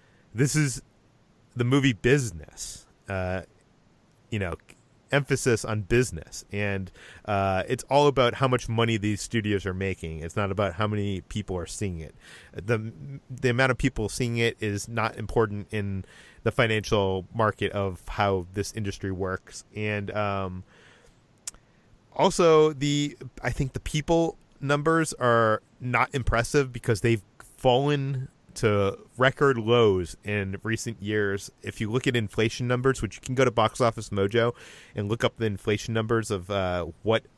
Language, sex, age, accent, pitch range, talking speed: English, male, 30-49, American, 100-125 Hz, 155 wpm